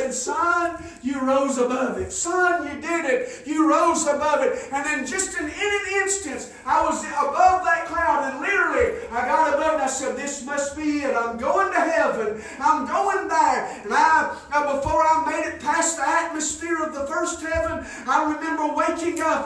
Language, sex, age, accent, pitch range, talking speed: English, male, 50-69, American, 280-325 Hz, 195 wpm